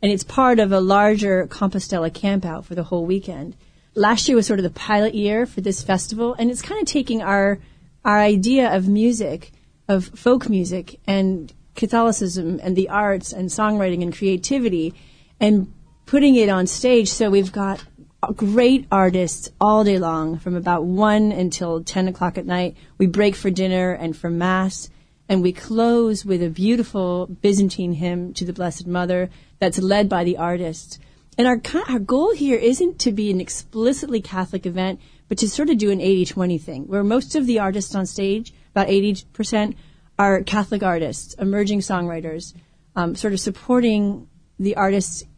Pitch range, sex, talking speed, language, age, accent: 180-220 Hz, female, 175 wpm, English, 30-49, American